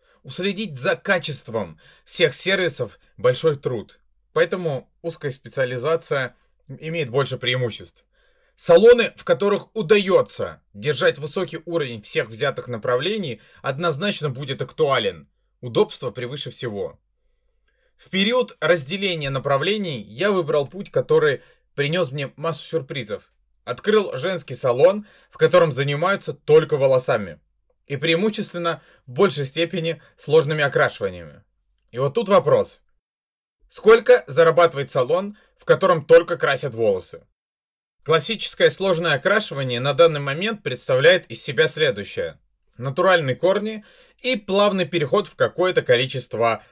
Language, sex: Russian, male